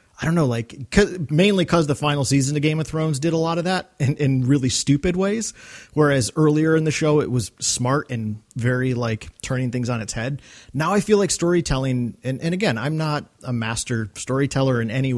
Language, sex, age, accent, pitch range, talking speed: English, male, 30-49, American, 125-170 Hz, 215 wpm